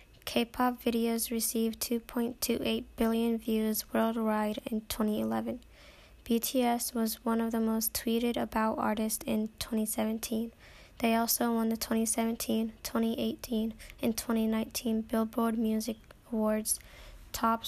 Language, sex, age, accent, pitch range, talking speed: English, female, 10-29, American, 220-230 Hz, 110 wpm